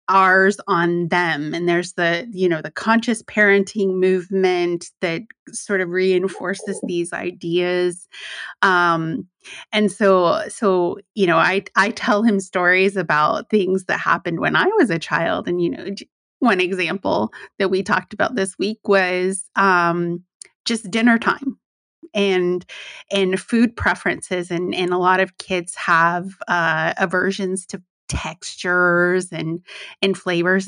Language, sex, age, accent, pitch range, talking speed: English, female, 30-49, American, 185-240 Hz, 140 wpm